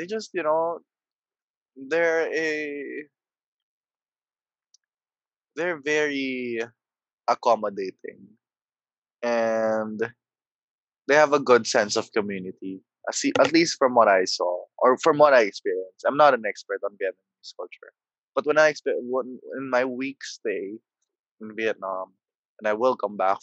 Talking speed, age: 135 wpm, 20-39